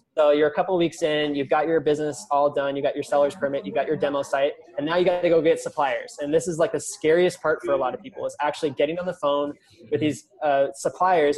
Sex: male